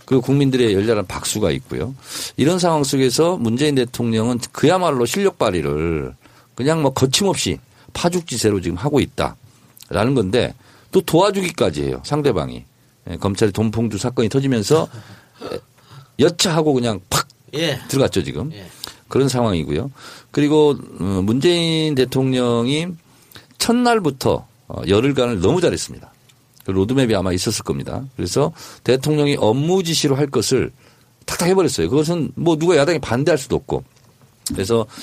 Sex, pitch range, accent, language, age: male, 105-150 Hz, native, Korean, 50-69